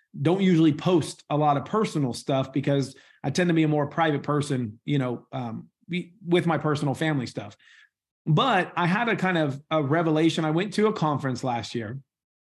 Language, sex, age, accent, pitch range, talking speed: English, male, 40-59, American, 145-180 Hz, 195 wpm